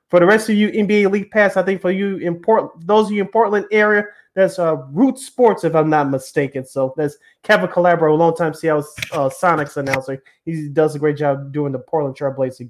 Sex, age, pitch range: male, 20-39, 160-205 Hz